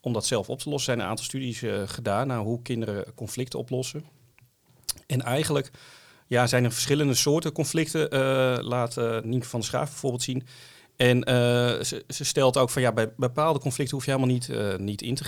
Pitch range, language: 115-135 Hz, Dutch